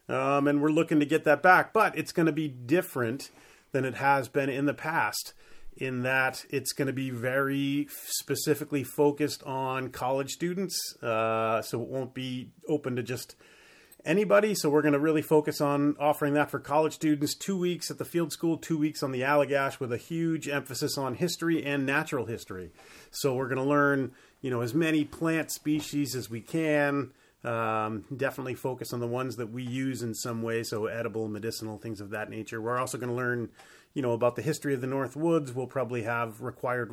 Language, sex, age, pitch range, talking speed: English, male, 30-49, 120-150 Hz, 205 wpm